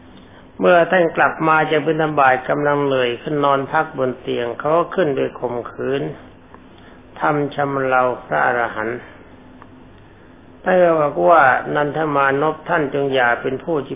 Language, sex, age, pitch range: Thai, male, 60-79, 105-150 Hz